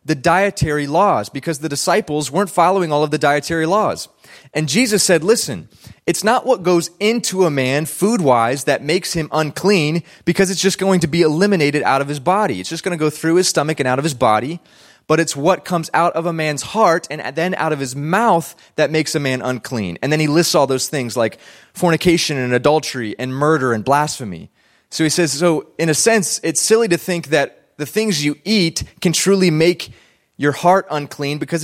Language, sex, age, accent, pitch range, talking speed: English, male, 20-39, American, 145-180 Hz, 210 wpm